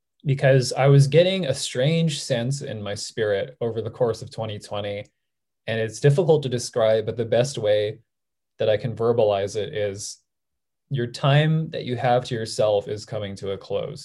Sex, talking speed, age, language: male, 180 wpm, 20-39, English